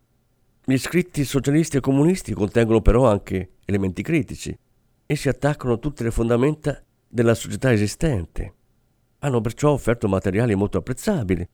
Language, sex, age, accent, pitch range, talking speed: Italian, male, 50-69, native, 105-130 Hz, 135 wpm